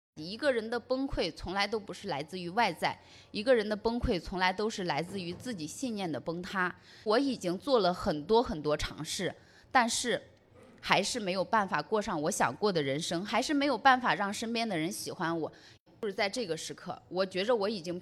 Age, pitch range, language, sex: 20-39, 170-240 Hz, Chinese, female